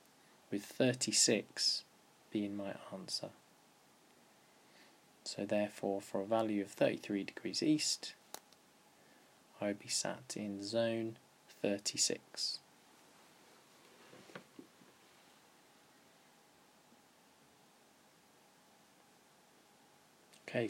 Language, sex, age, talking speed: English, male, 20-39, 65 wpm